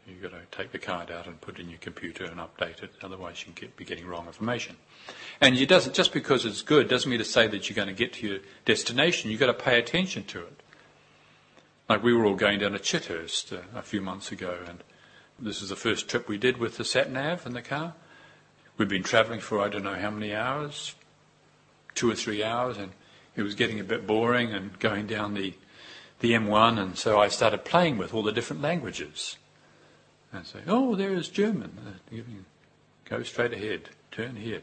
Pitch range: 100-140 Hz